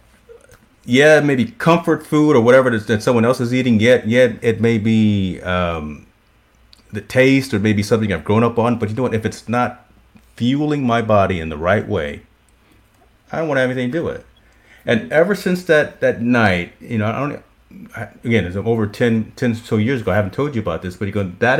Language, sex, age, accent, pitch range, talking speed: English, male, 40-59, American, 100-125 Hz, 225 wpm